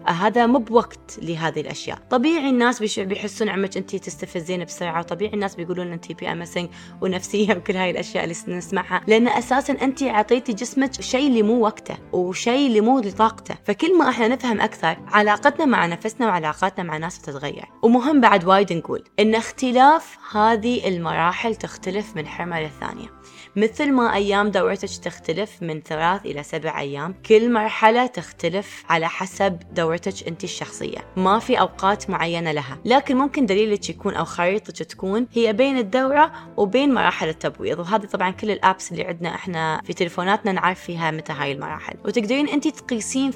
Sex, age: female, 20-39